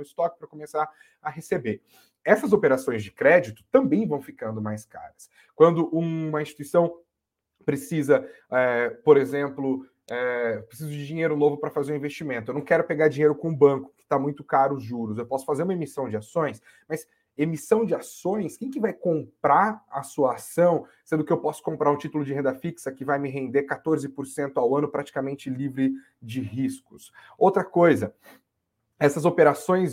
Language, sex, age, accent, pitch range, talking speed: Portuguese, male, 30-49, Brazilian, 130-165 Hz, 175 wpm